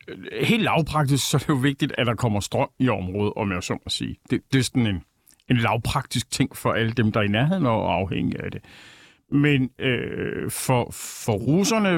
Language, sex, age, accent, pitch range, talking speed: Danish, male, 50-69, native, 115-150 Hz, 210 wpm